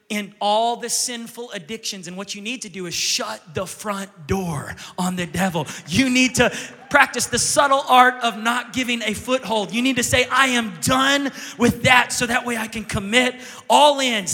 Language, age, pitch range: English, 30-49, 190-255 Hz